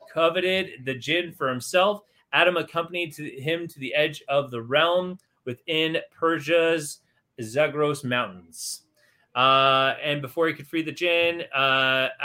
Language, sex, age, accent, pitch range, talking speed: English, male, 30-49, American, 130-165 Hz, 130 wpm